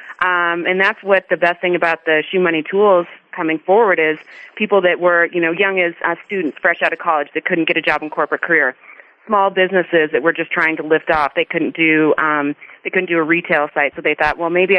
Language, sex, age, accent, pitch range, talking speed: English, female, 30-49, American, 155-185 Hz, 245 wpm